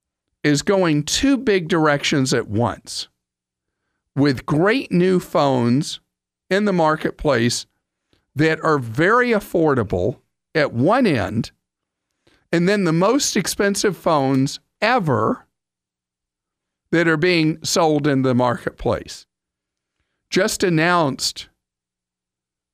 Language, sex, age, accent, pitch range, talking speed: English, male, 50-69, American, 115-185 Hz, 100 wpm